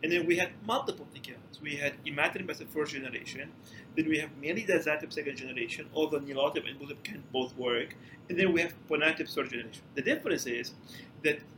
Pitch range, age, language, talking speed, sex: 140-190 Hz, 40-59, English, 190 wpm, male